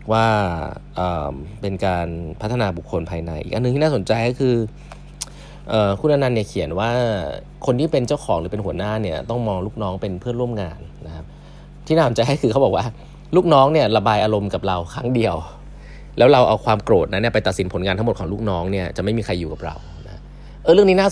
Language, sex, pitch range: Thai, male, 95-130 Hz